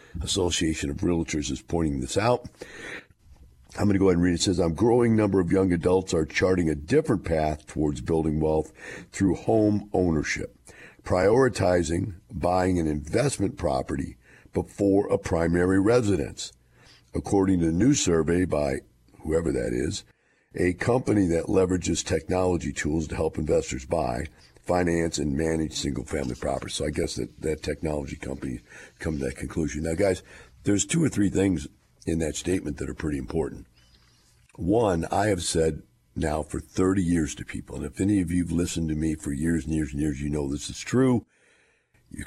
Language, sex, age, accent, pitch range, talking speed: English, male, 50-69, American, 75-95 Hz, 175 wpm